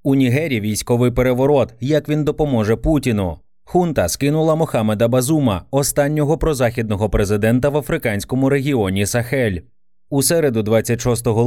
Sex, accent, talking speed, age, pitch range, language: male, native, 115 wpm, 30-49, 110-140 Hz, Ukrainian